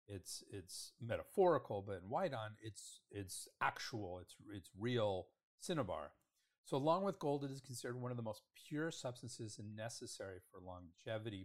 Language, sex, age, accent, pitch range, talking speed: English, male, 40-59, American, 105-135 Hz, 155 wpm